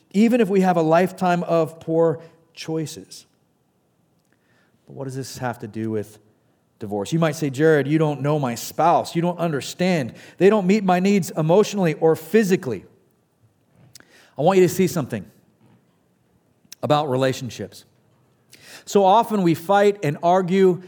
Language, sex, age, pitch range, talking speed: English, male, 40-59, 145-190 Hz, 150 wpm